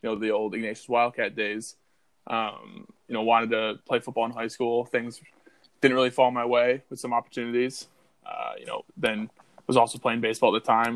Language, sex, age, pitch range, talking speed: English, male, 20-39, 110-125 Hz, 205 wpm